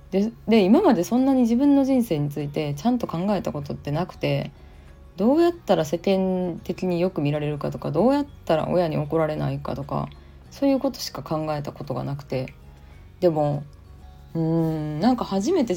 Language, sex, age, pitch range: Japanese, female, 20-39, 140-200 Hz